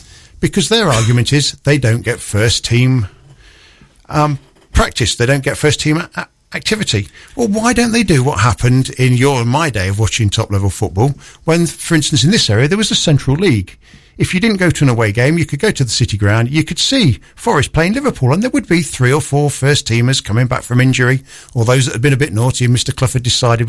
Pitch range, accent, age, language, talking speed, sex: 115-150 Hz, British, 50-69, English, 220 wpm, male